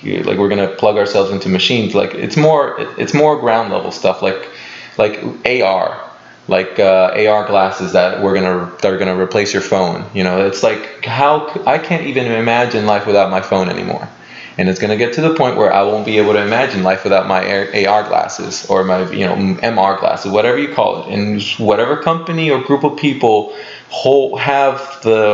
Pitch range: 95-120 Hz